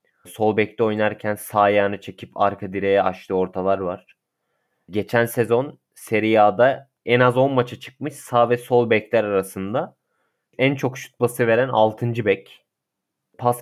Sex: male